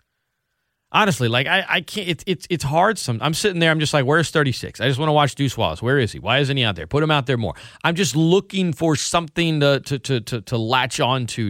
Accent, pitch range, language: American, 105-145 Hz, English